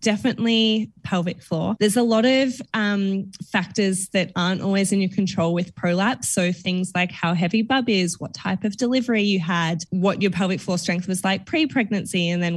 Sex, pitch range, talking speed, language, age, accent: female, 175-205 Hz, 190 wpm, English, 10-29, Australian